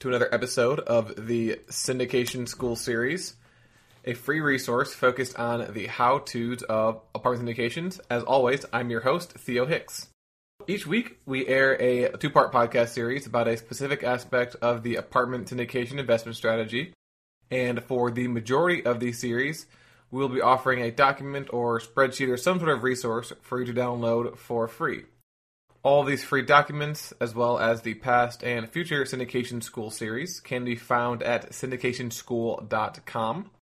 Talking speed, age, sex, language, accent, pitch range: 160 wpm, 20-39, male, English, American, 120-130 Hz